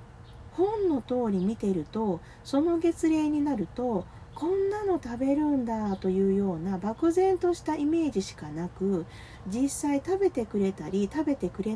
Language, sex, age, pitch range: Japanese, female, 40-59, 180-285 Hz